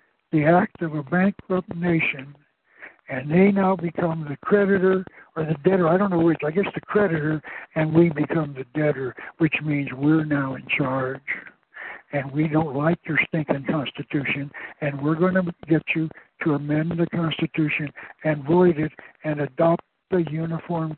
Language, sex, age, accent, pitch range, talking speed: English, male, 60-79, American, 155-195 Hz, 165 wpm